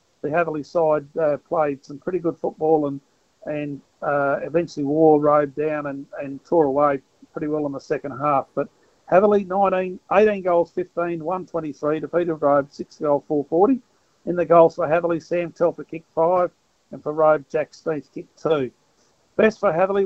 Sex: male